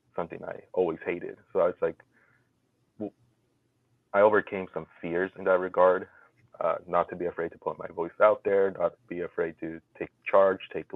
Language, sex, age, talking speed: English, male, 30-49, 190 wpm